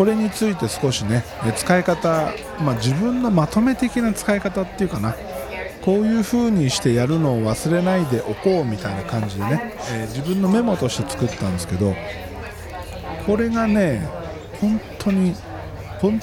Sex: male